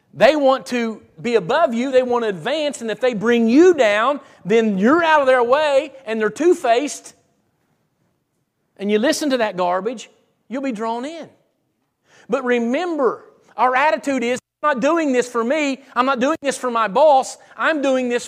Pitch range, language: 220-280 Hz, English